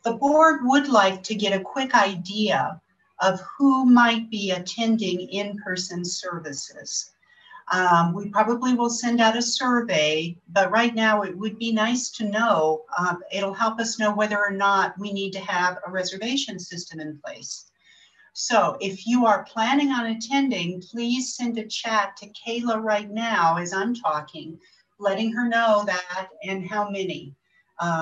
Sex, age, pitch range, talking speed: female, 50-69, 185-225 Hz, 165 wpm